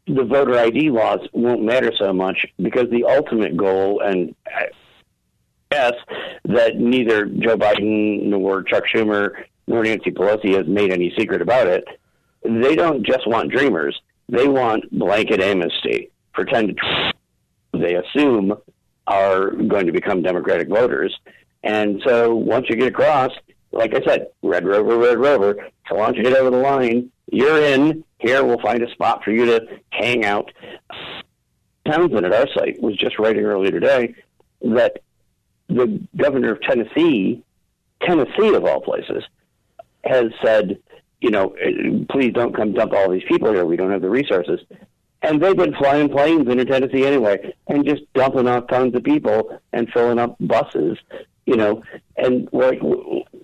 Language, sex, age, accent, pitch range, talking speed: English, male, 50-69, American, 110-160 Hz, 155 wpm